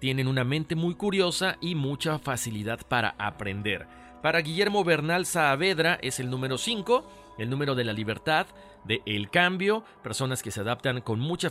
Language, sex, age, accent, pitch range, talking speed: Spanish, male, 40-59, Mexican, 110-165 Hz, 165 wpm